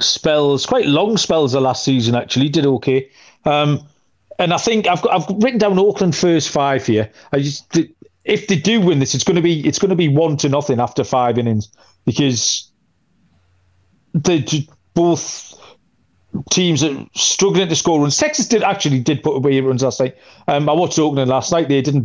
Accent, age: British, 40-59